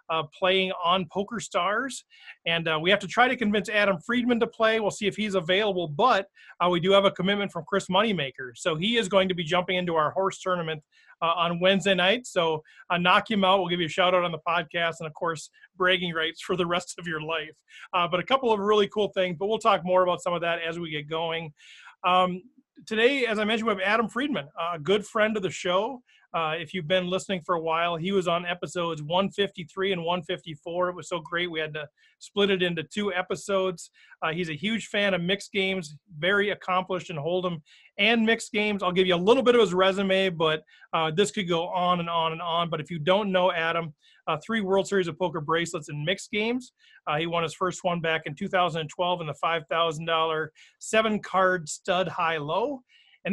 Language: English